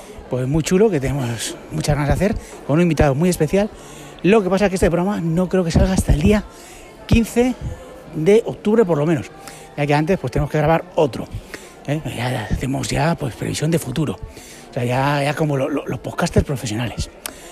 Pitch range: 135-195 Hz